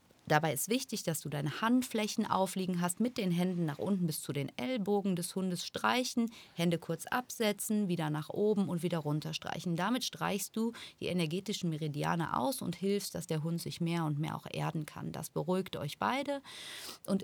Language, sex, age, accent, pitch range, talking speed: German, female, 30-49, German, 165-205 Hz, 190 wpm